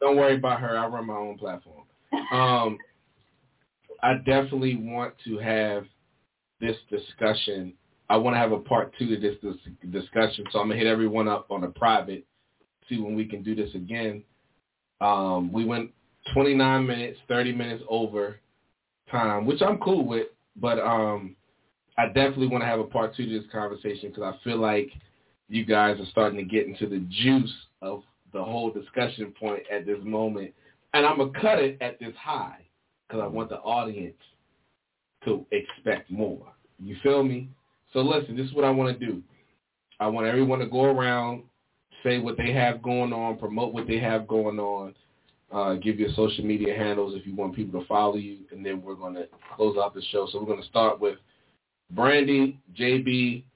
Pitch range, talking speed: 105-125 Hz, 190 wpm